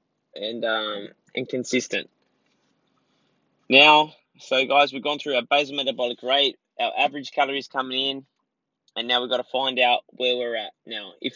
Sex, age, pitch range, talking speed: male, 20-39, 125-155 Hz, 165 wpm